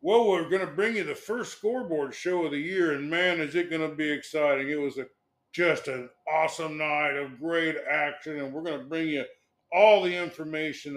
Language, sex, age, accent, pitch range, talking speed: English, male, 50-69, American, 135-175 Hz, 215 wpm